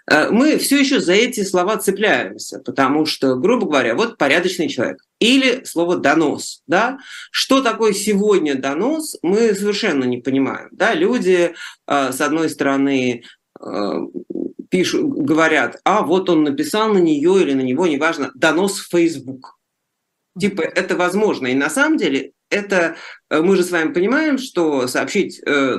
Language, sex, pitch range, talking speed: Russian, male, 135-230 Hz, 155 wpm